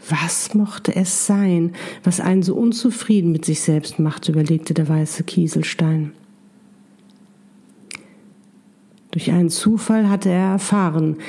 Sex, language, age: female, German, 50-69